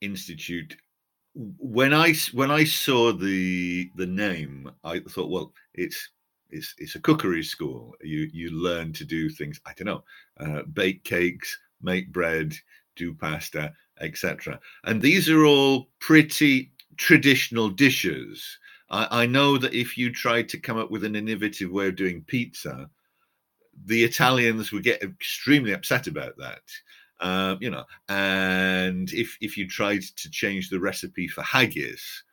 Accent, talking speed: British, 150 wpm